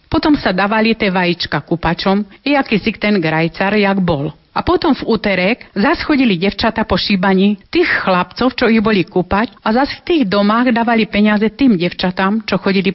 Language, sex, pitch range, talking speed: Slovak, female, 185-220 Hz, 180 wpm